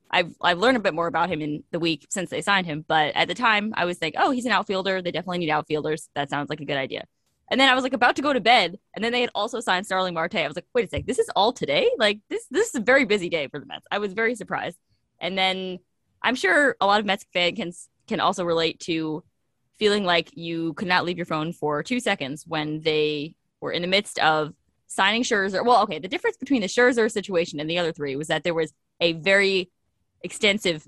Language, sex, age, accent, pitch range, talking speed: English, female, 20-39, American, 165-220 Hz, 255 wpm